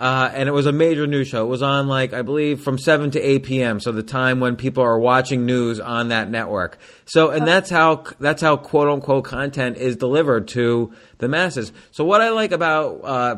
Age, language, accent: 30-49, English, American